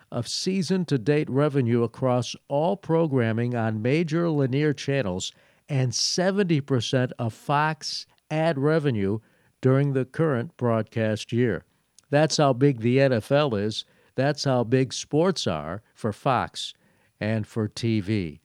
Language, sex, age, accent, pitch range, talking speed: English, male, 50-69, American, 115-145 Hz, 120 wpm